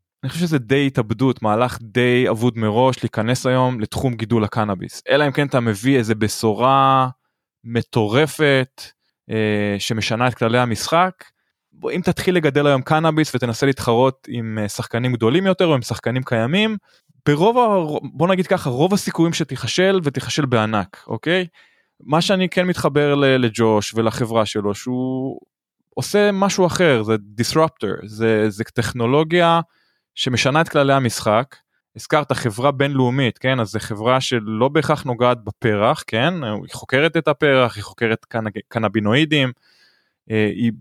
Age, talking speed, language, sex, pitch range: 20-39, 135 wpm, Hebrew, male, 110-150 Hz